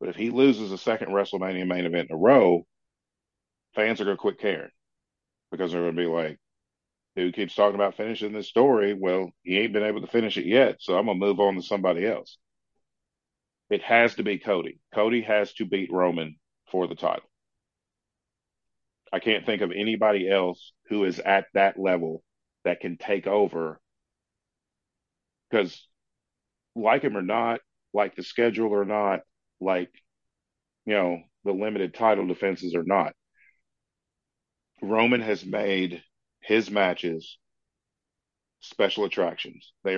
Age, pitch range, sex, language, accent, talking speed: 40-59, 90-105 Hz, male, English, American, 155 wpm